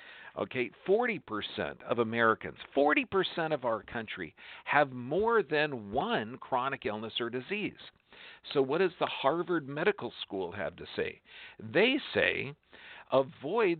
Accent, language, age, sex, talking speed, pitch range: American, English, 50-69, male, 125 wpm, 120-175 Hz